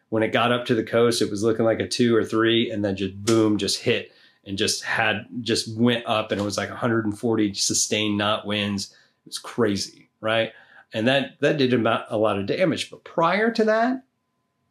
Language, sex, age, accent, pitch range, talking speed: English, male, 30-49, American, 110-150 Hz, 215 wpm